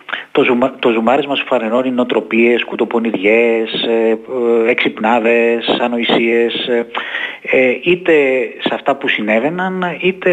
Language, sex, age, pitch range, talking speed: Greek, male, 30-49, 115-150 Hz, 105 wpm